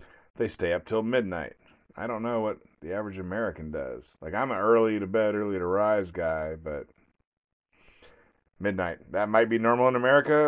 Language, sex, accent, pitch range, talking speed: English, male, American, 85-105 Hz, 180 wpm